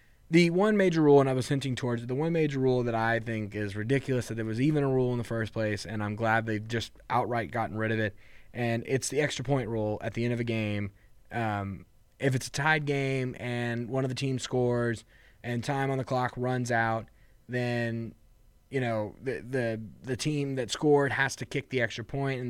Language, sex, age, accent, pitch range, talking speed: English, male, 20-39, American, 110-135 Hz, 225 wpm